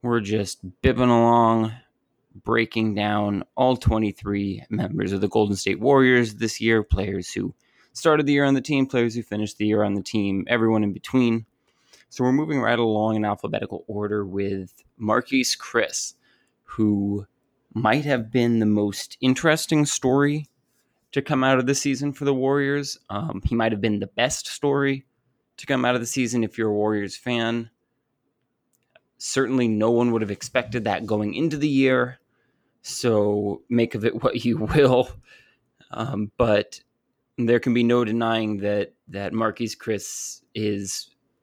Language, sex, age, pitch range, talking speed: English, male, 20-39, 105-130 Hz, 160 wpm